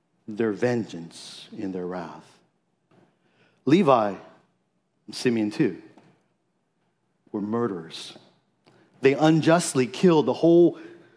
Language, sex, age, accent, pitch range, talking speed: English, male, 50-69, American, 115-135 Hz, 85 wpm